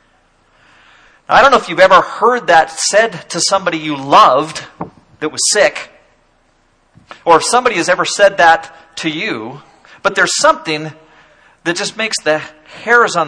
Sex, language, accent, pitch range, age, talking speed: male, English, American, 150-225 Hz, 40-59, 155 wpm